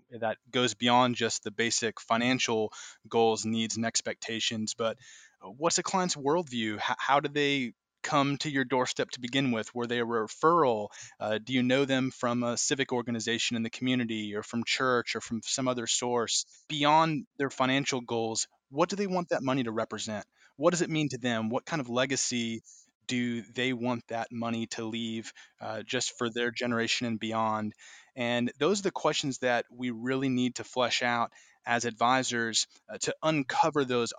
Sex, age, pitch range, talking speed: male, 20-39, 115-130 Hz, 185 wpm